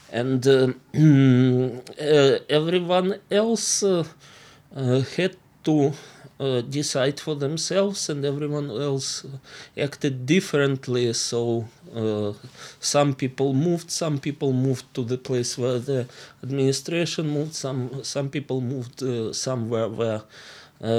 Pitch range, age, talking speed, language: 125-145 Hz, 20-39, 115 wpm, English